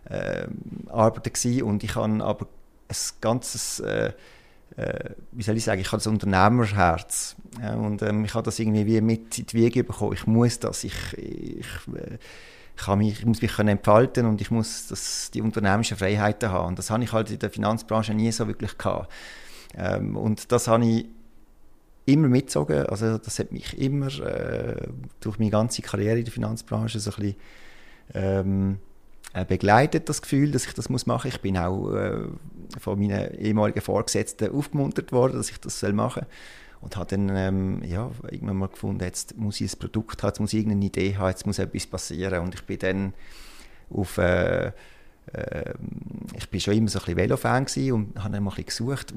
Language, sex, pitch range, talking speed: German, male, 100-115 Hz, 190 wpm